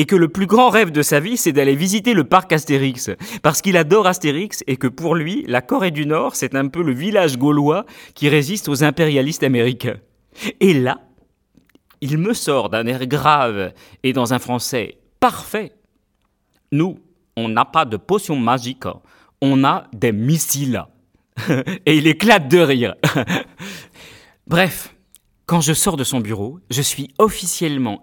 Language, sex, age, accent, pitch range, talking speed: French, male, 30-49, French, 115-160 Hz, 165 wpm